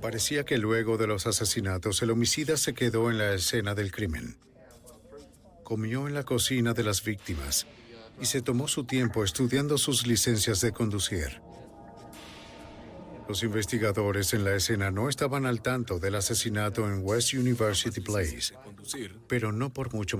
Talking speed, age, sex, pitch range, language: 150 wpm, 50-69, male, 105-125 Hz, Spanish